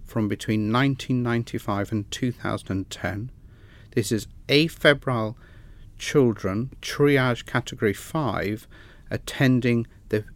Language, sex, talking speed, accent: English, male, 80 wpm, British